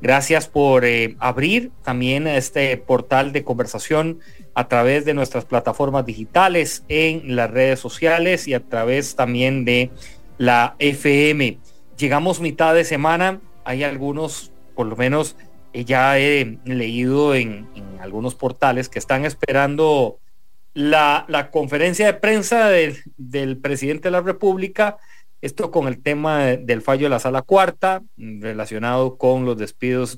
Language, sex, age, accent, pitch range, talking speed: English, male, 40-59, Mexican, 125-165 Hz, 140 wpm